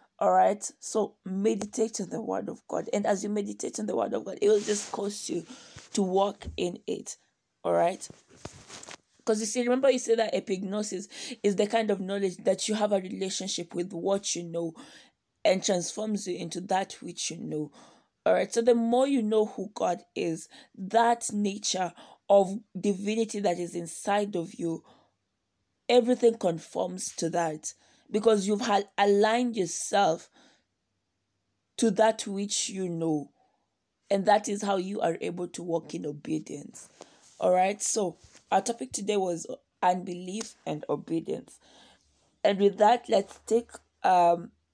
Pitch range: 180-225 Hz